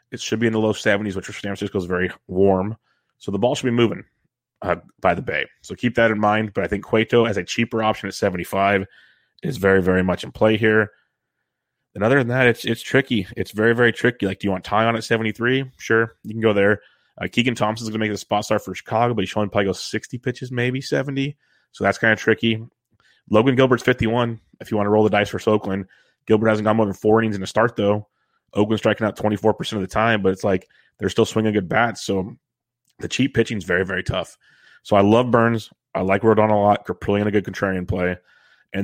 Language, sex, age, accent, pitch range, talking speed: English, male, 30-49, American, 100-115 Hz, 250 wpm